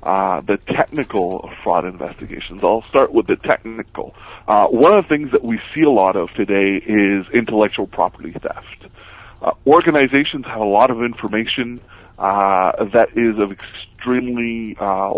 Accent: American